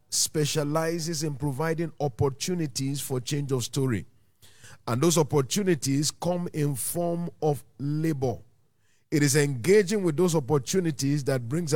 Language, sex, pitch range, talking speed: English, male, 115-160 Hz, 120 wpm